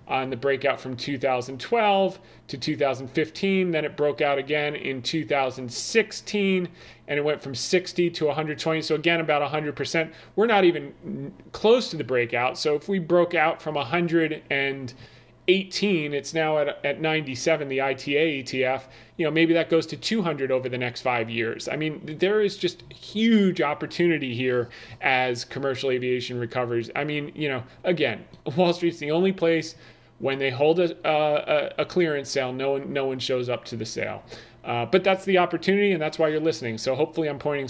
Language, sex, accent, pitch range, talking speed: English, male, American, 130-170 Hz, 180 wpm